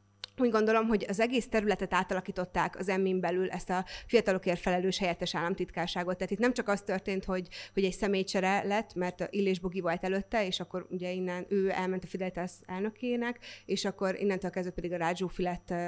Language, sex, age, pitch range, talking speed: Hungarian, female, 30-49, 185-220 Hz, 180 wpm